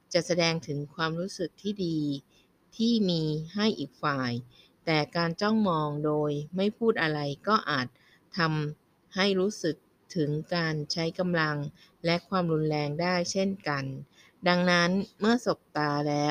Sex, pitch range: female, 145-180 Hz